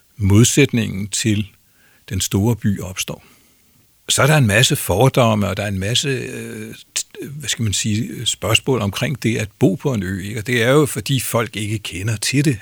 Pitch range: 100-130 Hz